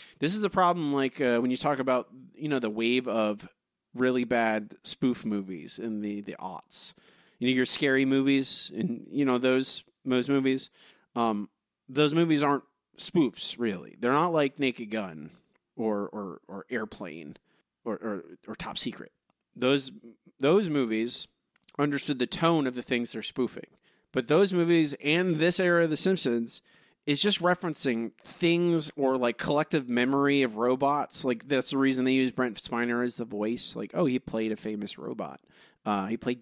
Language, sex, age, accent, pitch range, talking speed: English, male, 30-49, American, 120-150 Hz, 175 wpm